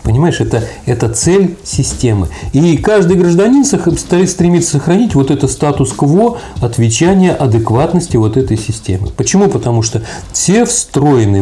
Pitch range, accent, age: 110-150 Hz, native, 40-59